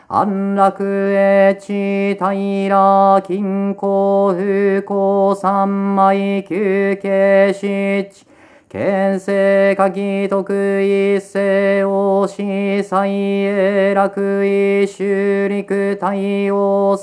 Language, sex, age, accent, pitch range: Japanese, male, 40-59, native, 195-200 Hz